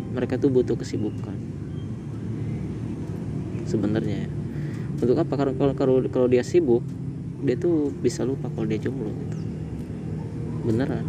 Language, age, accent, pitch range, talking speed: Indonesian, 20-39, native, 110-125 Hz, 110 wpm